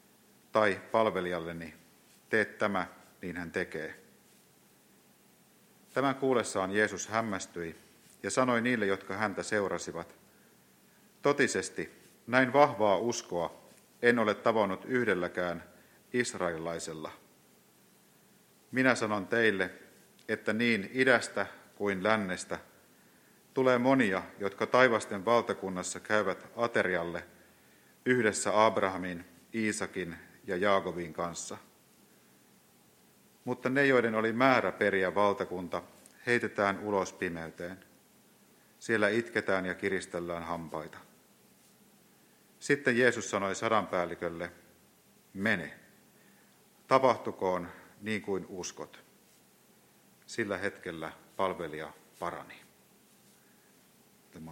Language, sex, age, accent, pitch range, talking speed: Finnish, male, 50-69, native, 90-120 Hz, 85 wpm